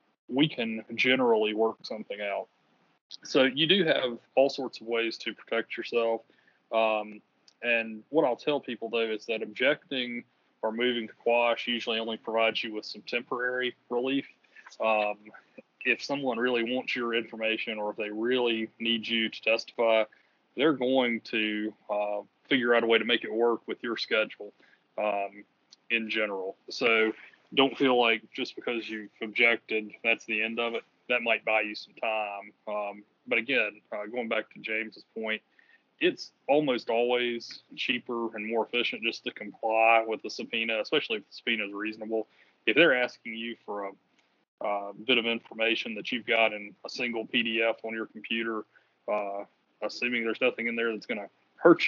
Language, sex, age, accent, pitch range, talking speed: English, male, 20-39, American, 110-120 Hz, 170 wpm